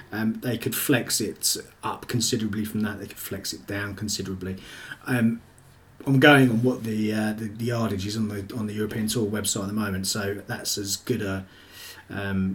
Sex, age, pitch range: male, 30-49, 105-140 Hz